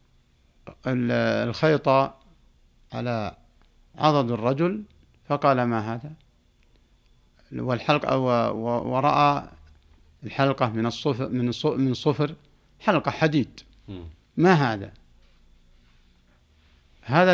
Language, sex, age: Arabic, male, 60-79